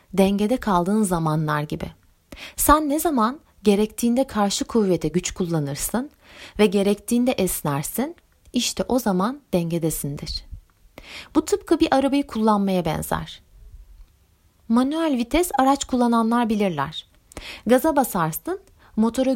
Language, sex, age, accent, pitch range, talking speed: Turkish, female, 30-49, native, 170-255 Hz, 100 wpm